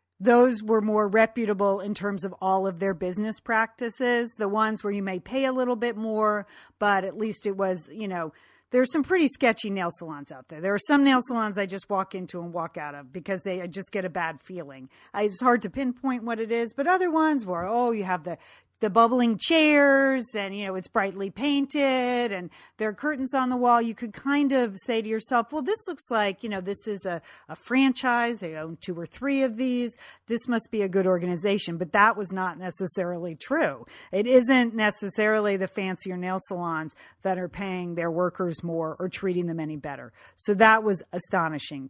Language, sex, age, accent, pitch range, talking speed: English, female, 40-59, American, 185-235 Hz, 210 wpm